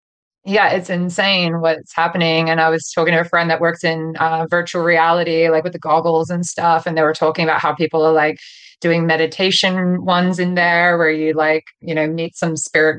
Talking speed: 210 wpm